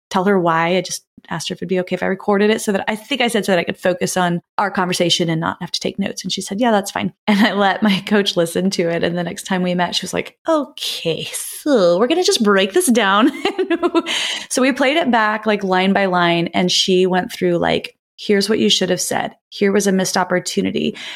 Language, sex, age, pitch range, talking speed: English, female, 20-39, 180-225 Hz, 260 wpm